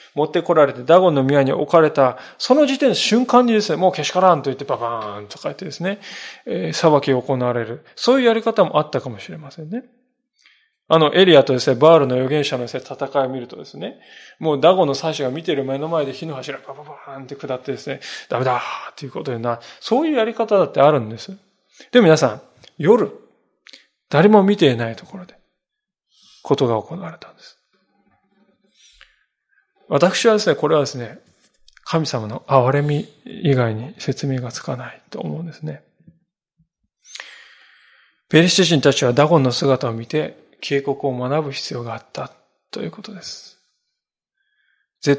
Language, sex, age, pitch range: Japanese, male, 20-39, 135-190 Hz